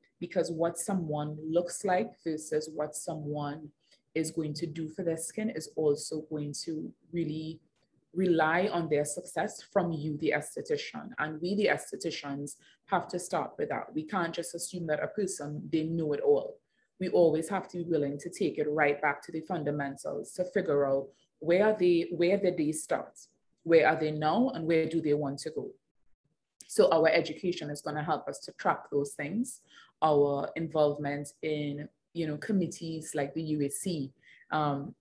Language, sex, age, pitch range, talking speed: English, female, 20-39, 150-175 Hz, 175 wpm